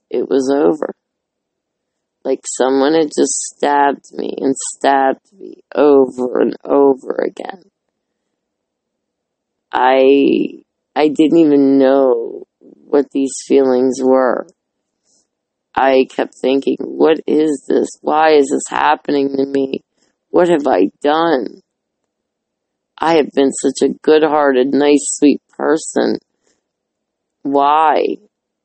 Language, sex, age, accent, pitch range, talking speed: English, female, 20-39, American, 135-155 Hz, 105 wpm